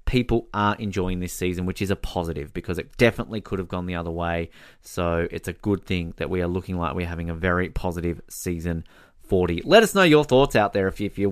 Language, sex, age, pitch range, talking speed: English, male, 20-39, 100-140 Hz, 245 wpm